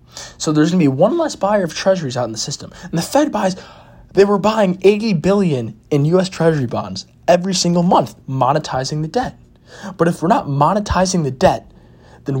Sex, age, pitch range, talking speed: male, 20-39, 130-180 Hz, 195 wpm